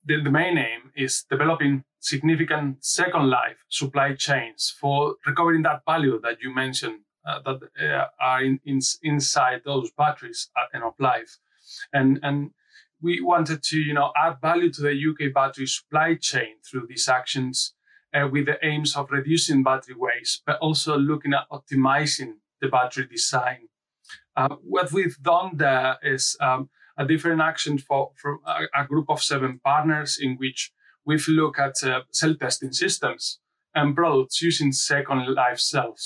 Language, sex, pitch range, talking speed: English, male, 130-155 Hz, 160 wpm